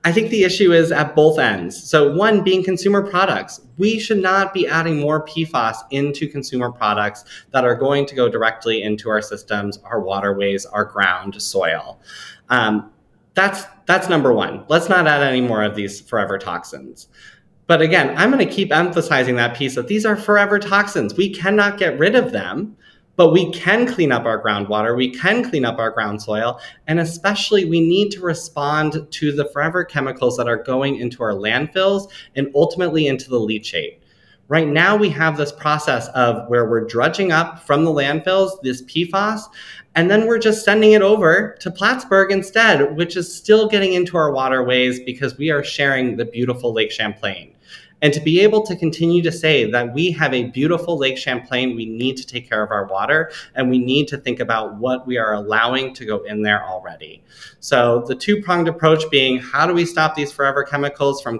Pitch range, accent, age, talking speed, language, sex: 125-180 Hz, American, 20-39, 195 wpm, English, male